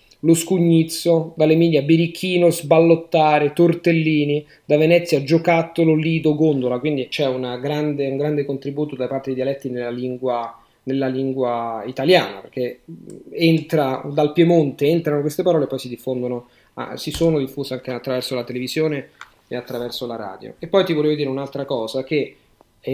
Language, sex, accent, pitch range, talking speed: Italian, male, native, 130-160 Hz, 155 wpm